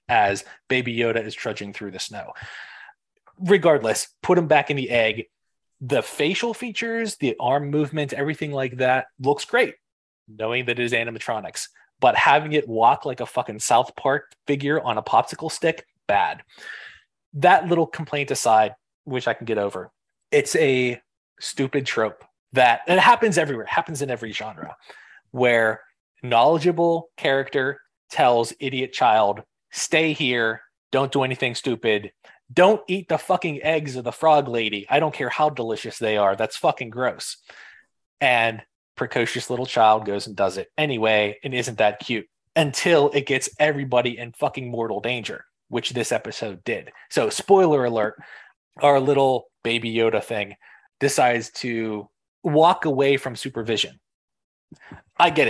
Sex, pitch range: male, 115-155 Hz